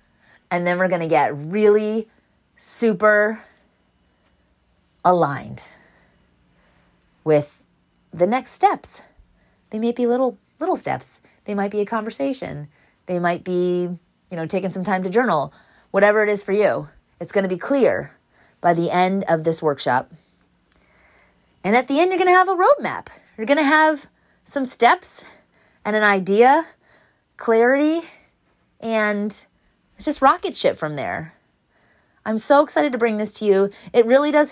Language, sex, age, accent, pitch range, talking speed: English, female, 30-49, American, 165-225 Hz, 150 wpm